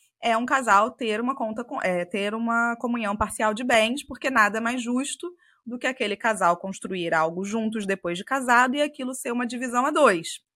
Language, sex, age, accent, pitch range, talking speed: Portuguese, female, 20-39, Brazilian, 195-255 Hz, 200 wpm